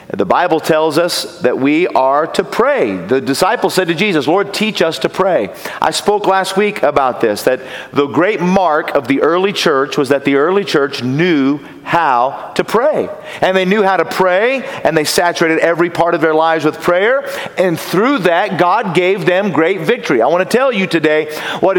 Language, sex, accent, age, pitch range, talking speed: English, male, American, 40-59, 165-210 Hz, 200 wpm